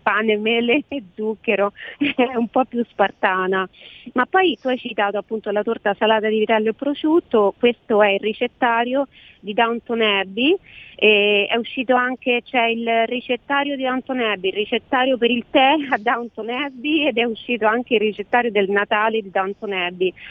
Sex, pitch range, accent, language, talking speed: female, 205-250 Hz, native, Italian, 175 wpm